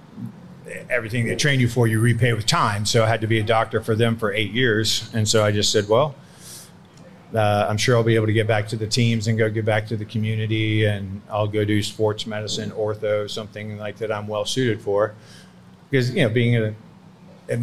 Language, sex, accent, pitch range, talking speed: English, male, American, 105-115 Hz, 220 wpm